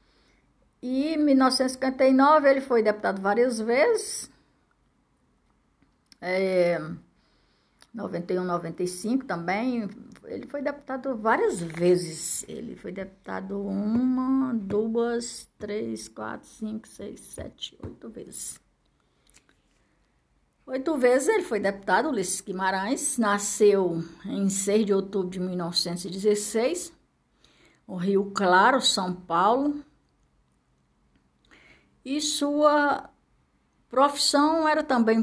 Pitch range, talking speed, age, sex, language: 180-255 Hz, 90 wpm, 60-79, female, Portuguese